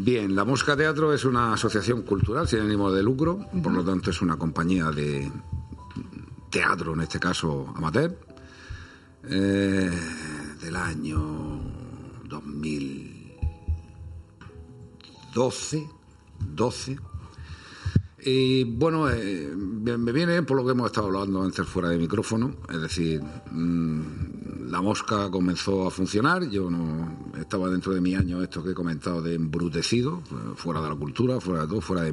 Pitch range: 80-110 Hz